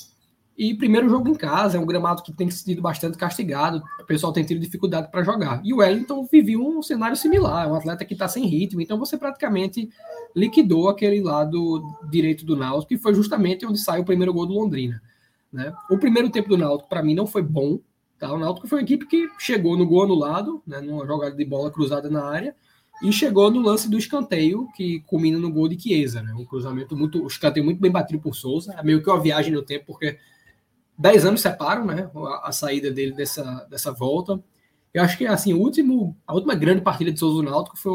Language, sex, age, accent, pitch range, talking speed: Portuguese, male, 20-39, Brazilian, 150-200 Hz, 220 wpm